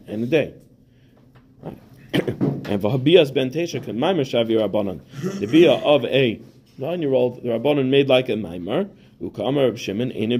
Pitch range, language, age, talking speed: 115-140 Hz, English, 40-59, 150 wpm